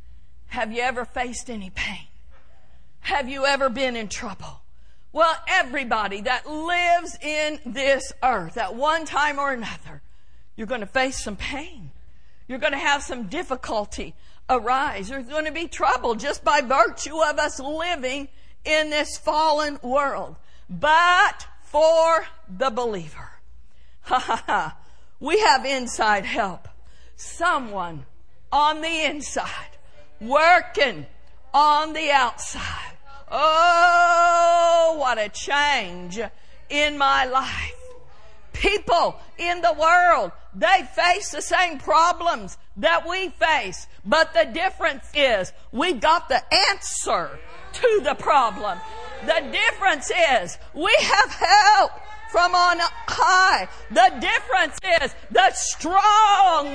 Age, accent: 50-69, American